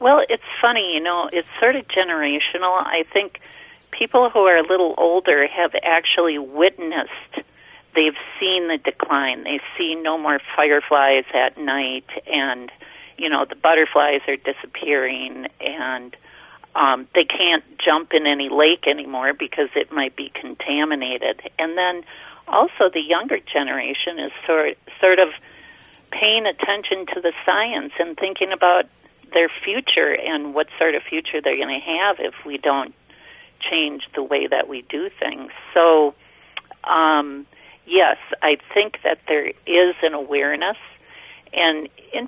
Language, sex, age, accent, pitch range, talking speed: English, female, 50-69, American, 150-195 Hz, 145 wpm